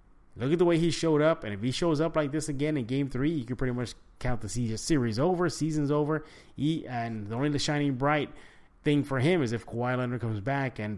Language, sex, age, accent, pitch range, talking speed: English, male, 30-49, American, 115-155 Hz, 240 wpm